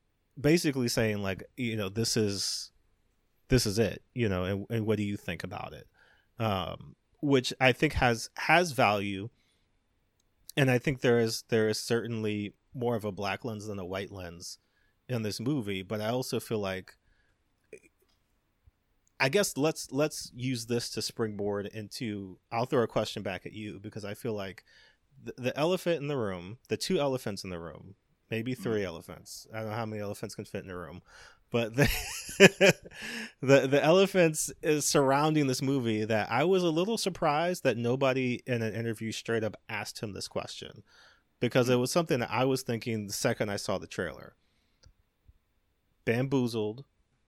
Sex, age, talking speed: male, 30-49, 175 wpm